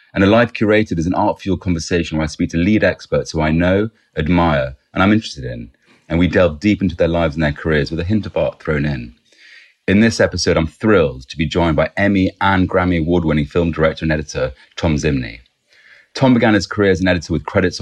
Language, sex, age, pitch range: English, male, 30-49, 75-95 Hz